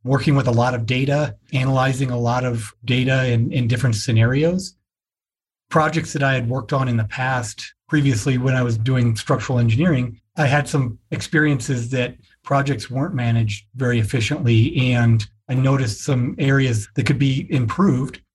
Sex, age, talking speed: male, 30-49, 165 wpm